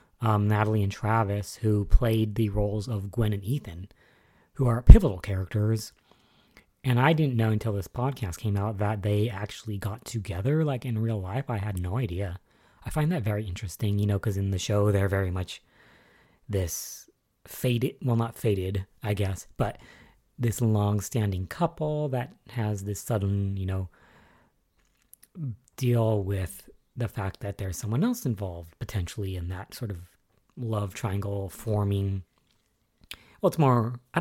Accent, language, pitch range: American, English, 100-130 Hz